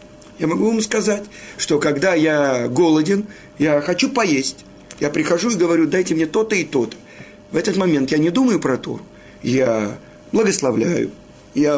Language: Russian